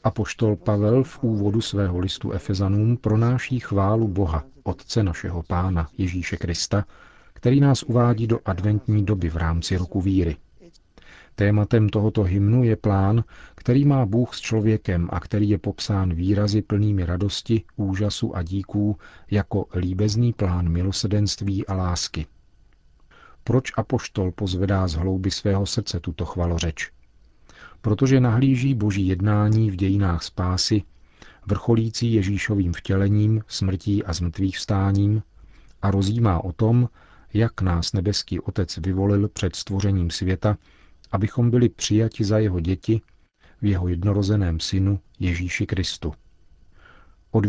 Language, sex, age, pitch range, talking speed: Czech, male, 40-59, 90-110 Hz, 125 wpm